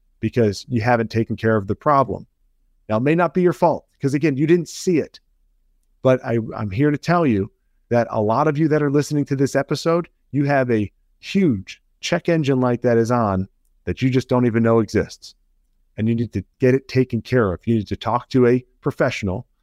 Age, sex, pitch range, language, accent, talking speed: 40-59, male, 110-145 Hz, English, American, 215 wpm